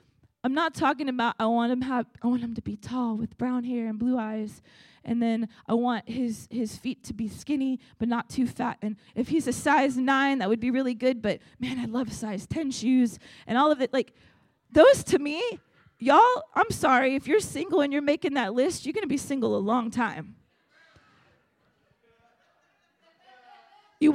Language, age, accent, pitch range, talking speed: English, 20-39, American, 235-295 Hz, 190 wpm